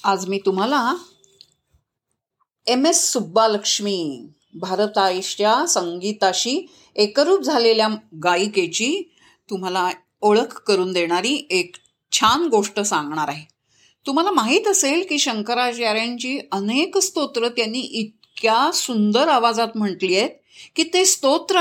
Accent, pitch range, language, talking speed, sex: native, 205-290 Hz, Marathi, 100 wpm, female